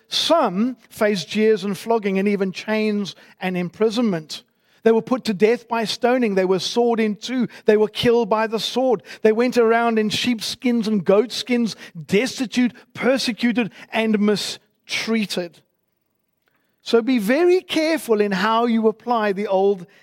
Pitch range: 190-240 Hz